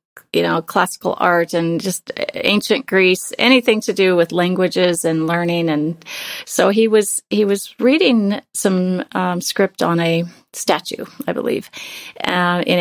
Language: English